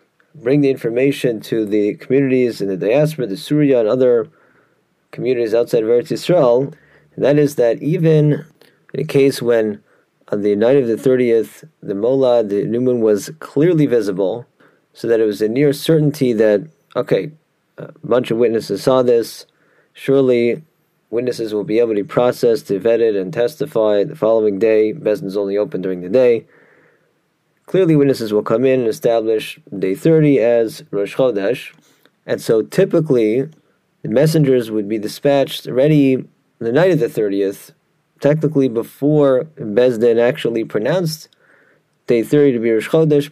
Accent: American